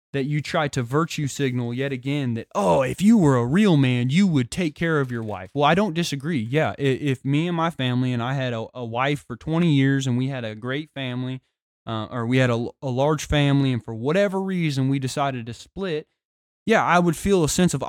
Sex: male